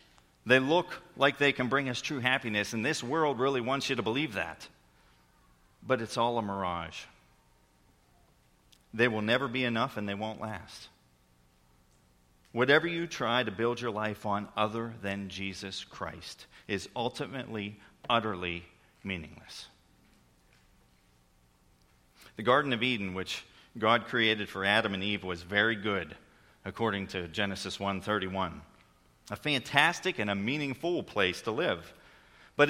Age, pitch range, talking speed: 40-59, 85-120 Hz, 140 wpm